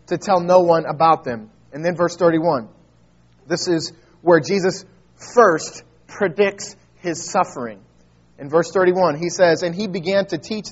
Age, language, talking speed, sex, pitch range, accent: 30-49, English, 155 wpm, male, 150-180 Hz, American